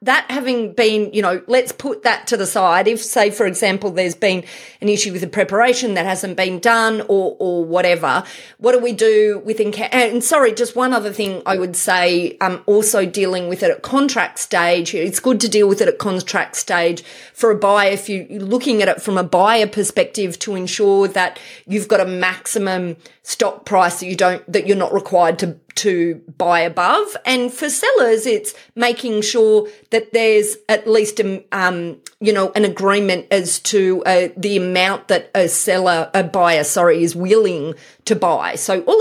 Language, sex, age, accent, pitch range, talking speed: English, female, 30-49, Australian, 185-230 Hz, 195 wpm